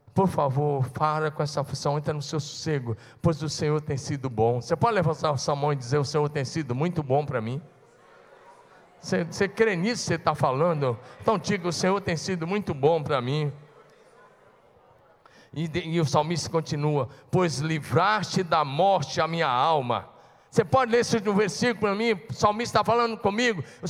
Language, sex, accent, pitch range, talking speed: Portuguese, male, Brazilian, 155-245 Hz, 185 wpm